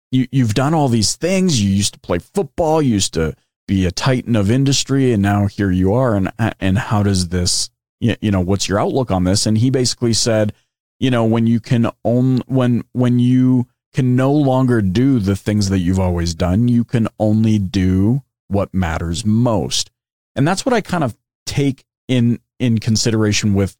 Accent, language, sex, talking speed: American, English, male, 195 wpm